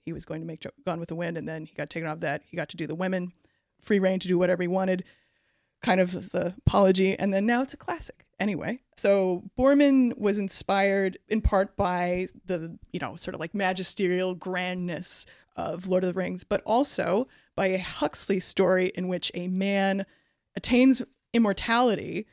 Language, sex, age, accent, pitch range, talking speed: English, female, 20-39, American, 180-205 Hz, 195 wpm